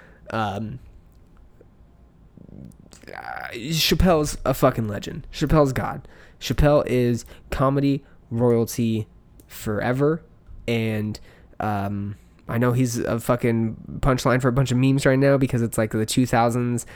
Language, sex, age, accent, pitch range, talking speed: English, male, 20-39, American, 105-125 Hz, 115 wpm